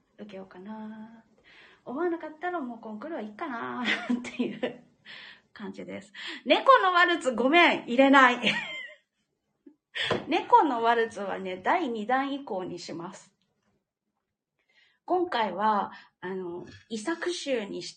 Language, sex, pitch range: Japanese, female, 215-320 Hz